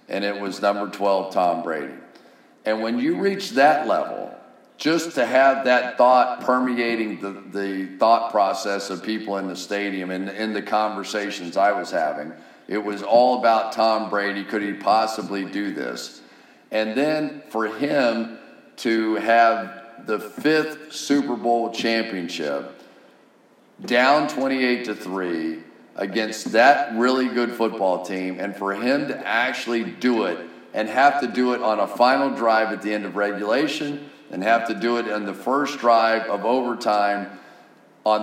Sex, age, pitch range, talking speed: male, 50-69, 100-120 Hz, 155 wpm